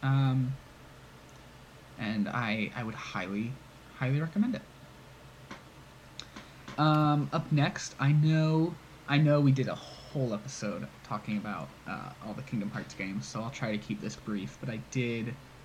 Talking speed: 150 wpm